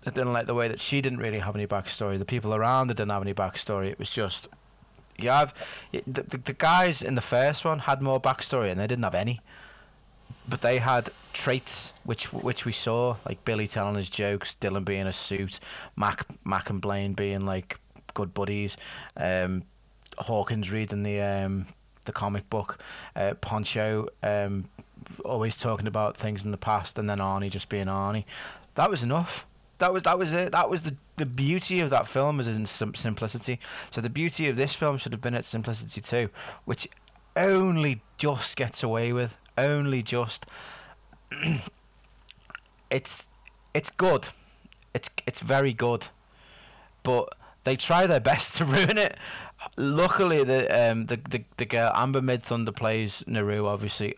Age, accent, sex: 20-39, British, male